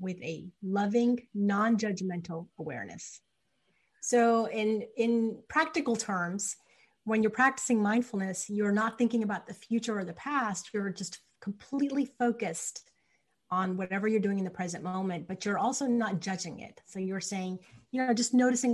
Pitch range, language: 190-235 Hz, English